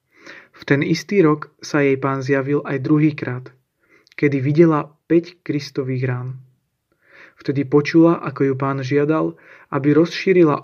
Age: 30-49